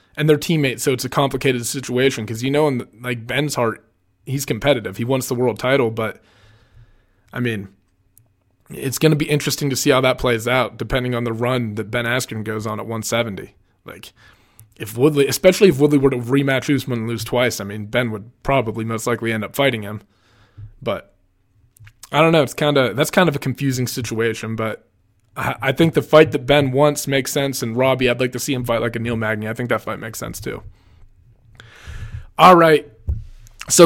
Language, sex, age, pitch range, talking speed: English, male, 20-39, 115-155 Hz, 205 wpm